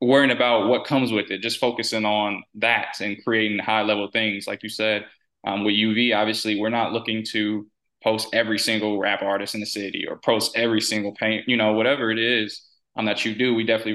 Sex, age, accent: male, 20-39, American